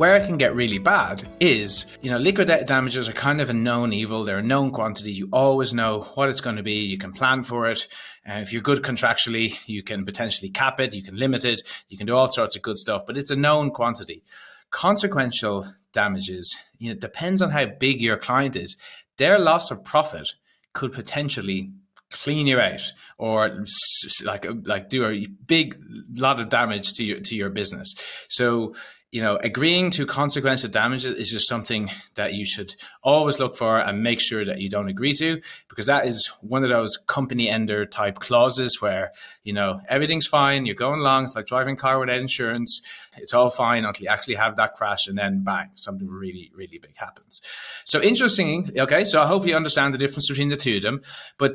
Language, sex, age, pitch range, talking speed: English, male, 30-49, 110-145 Hz, 205 wpm